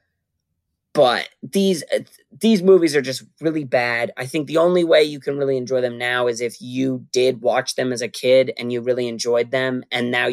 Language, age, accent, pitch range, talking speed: English, 20-39, American, 120-145 Hz, 205 wpm